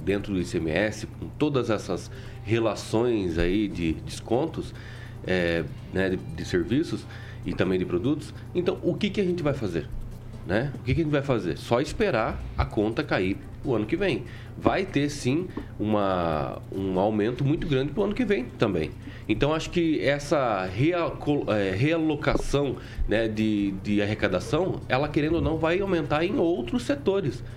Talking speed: 160 wpm